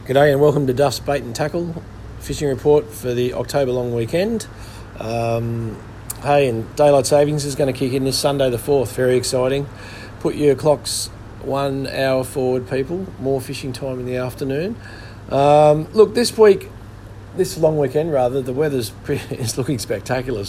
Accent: Australian